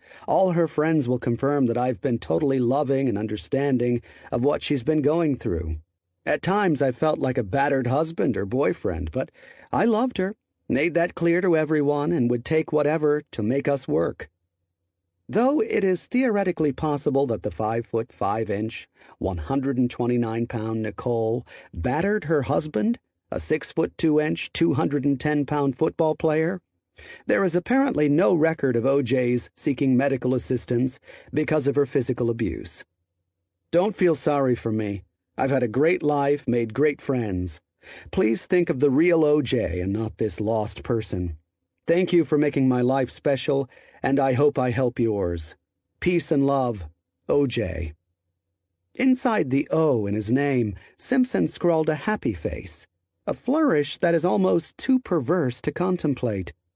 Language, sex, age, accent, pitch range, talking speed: English, male, 40-59, American, 110-155 Hz, 155 wpm